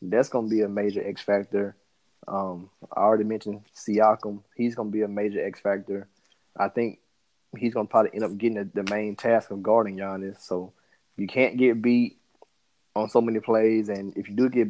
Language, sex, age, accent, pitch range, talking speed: English, male, 20-39, American, 100-115 Hz, 205 wpm